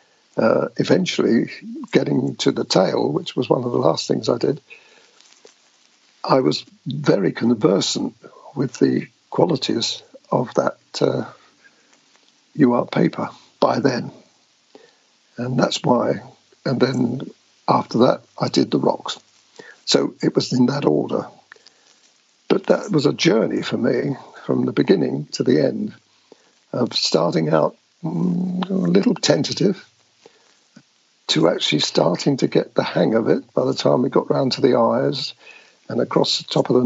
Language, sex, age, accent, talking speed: English, male, 60-79, British, 145 wpm